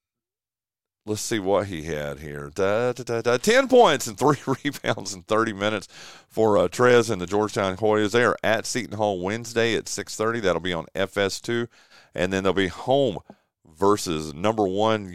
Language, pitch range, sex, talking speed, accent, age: English, 95-120 Hz, male, 160 wpm, American, 40-59